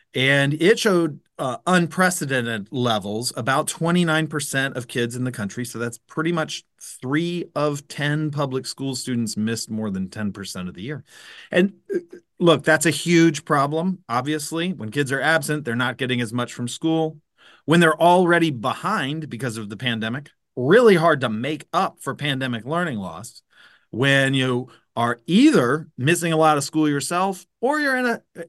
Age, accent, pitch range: 40-59, American, 125-175 Hz